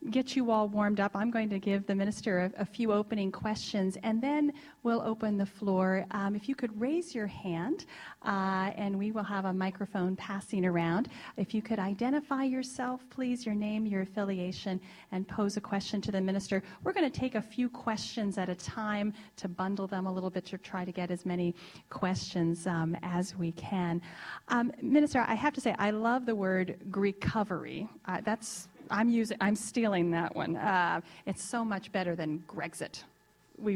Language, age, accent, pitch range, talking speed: English, 40-59, American, 185-225 Hz, 190 wpm